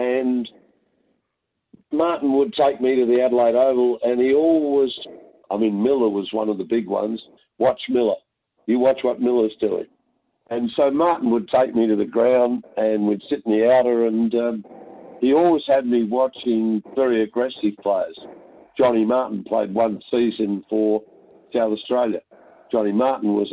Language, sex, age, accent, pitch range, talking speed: English, male, 50-69, Australian, 110-125 Hz, 165 wpm